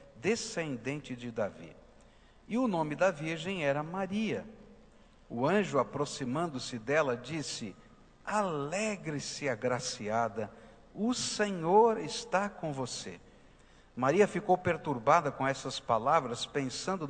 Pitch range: 130-210 Hz